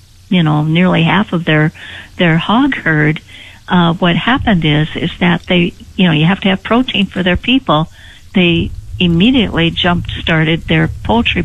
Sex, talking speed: female, 170 wpm